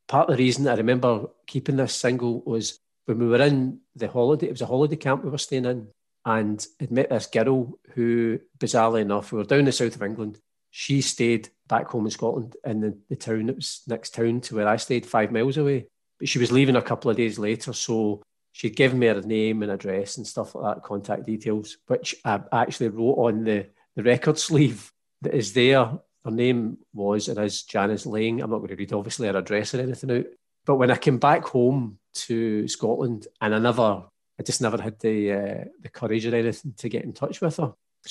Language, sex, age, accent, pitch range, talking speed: English, male, 40-59, British, 110-125 Hz, 225 wpm